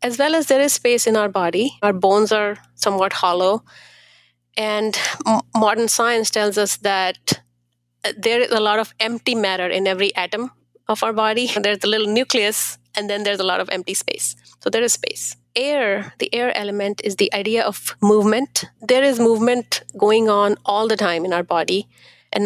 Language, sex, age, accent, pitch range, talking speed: English, female, 30-49, Indian, 190-220 Hz, 185 wpm